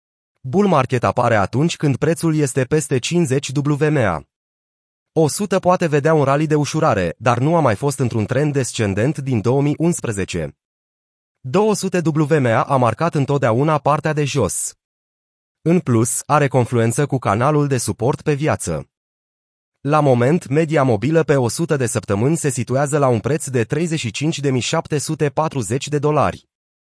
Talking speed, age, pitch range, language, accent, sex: 140 wpm, 30-49, 120-155 Hz, Romanian, native, male